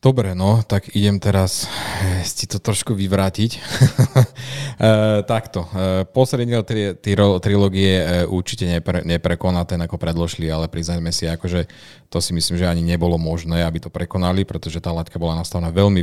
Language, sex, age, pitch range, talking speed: Slovak, male, 30-49, 85-100 Hz, 170 wpm